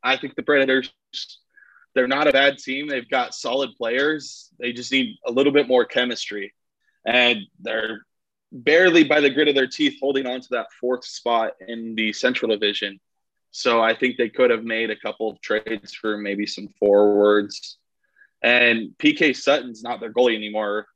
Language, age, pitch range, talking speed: English, 20-39, 110-135 Hz, 180 wpm